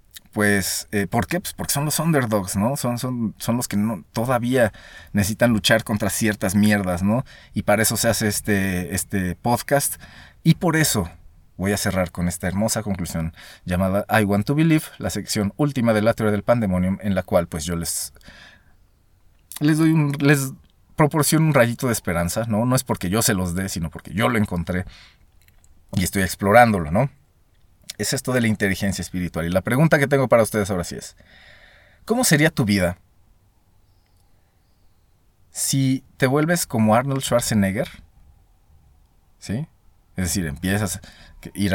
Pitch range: 90-110 Hz